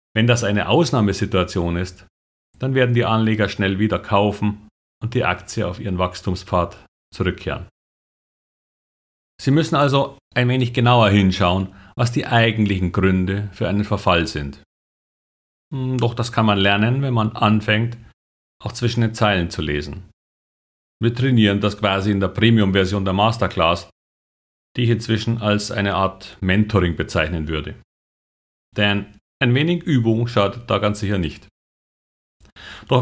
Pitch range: 95-115 Hz